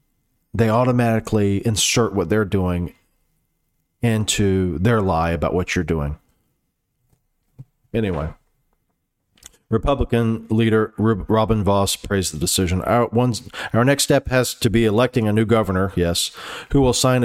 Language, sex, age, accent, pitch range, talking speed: English, male, 40-59, American, 100-120 Hz, 125 wpm